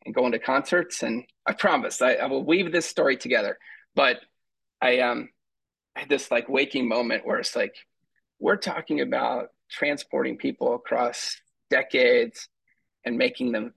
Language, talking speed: English, 155 wpm